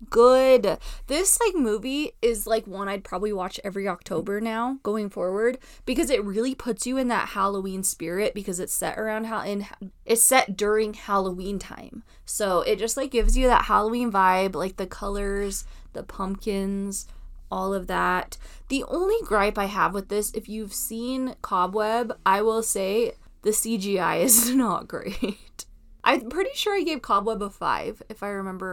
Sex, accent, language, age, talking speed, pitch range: female, American, English, 20-39, 170 wpm, 200-255 Hz